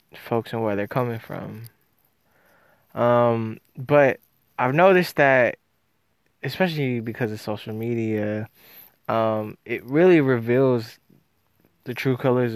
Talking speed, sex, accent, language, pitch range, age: 110 wpm, male, American, English, 110-130 Hz, 20-39